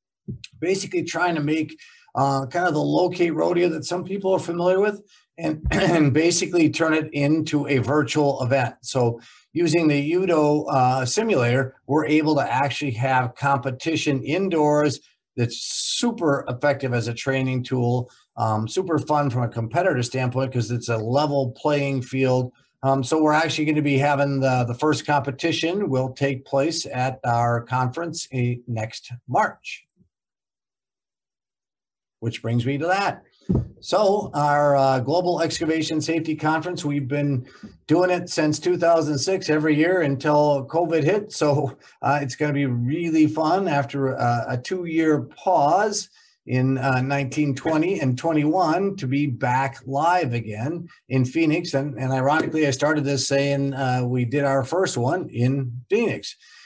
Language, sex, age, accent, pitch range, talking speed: English, male, 50-69, American, 130-160 Hz, 150 wpm